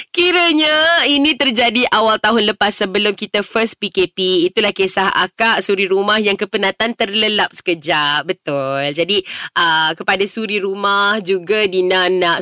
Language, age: Malay, 20-39